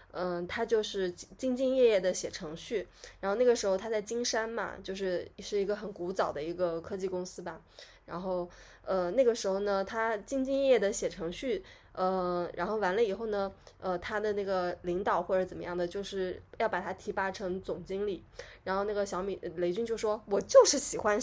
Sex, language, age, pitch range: female, Chinese, 20-39, 185-240 Hz